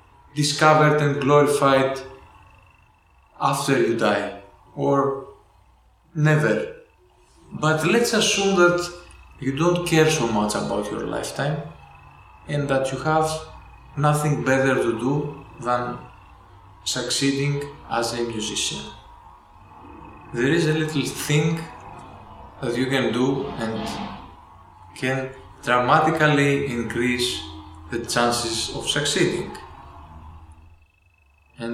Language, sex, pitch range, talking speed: English, male, 85-140 Hz, 95 wpm